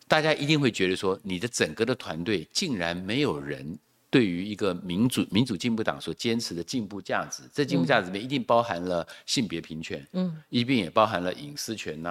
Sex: male